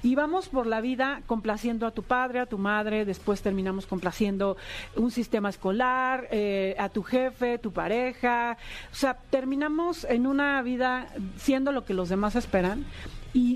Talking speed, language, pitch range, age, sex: 165 wpm, Spanish, 210-270 Hz, 40-59, female